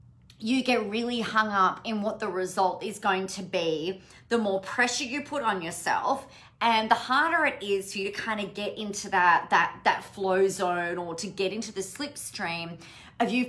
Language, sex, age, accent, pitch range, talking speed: English, female, 30-49, Australian, 185-245 Hz, 200 wpm